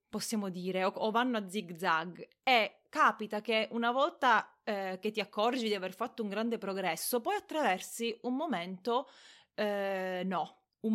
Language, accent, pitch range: Italian, native, 210-275 Hz